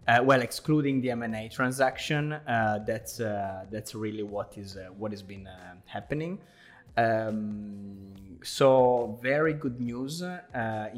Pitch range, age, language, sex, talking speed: 105-130 Hz, 20-39, English, male, 135 wpm